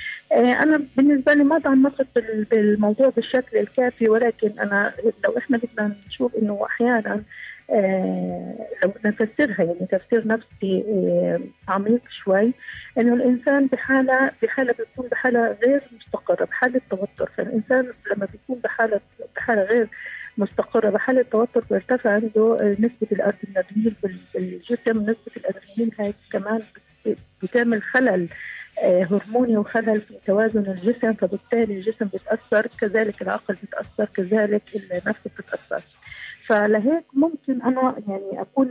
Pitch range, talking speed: 205-255 Hz, 115 wpm